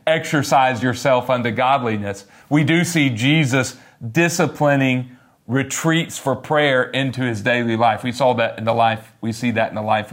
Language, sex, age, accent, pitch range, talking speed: English, male, 40-59, American, 120-160 Hz, 165 wpm